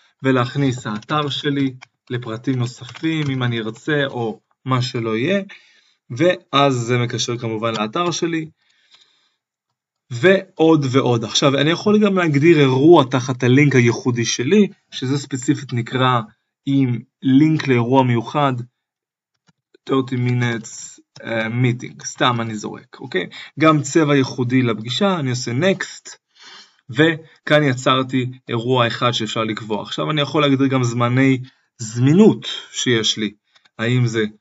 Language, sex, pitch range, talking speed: Hebrew, male, 115-145 Hz, 120 wpm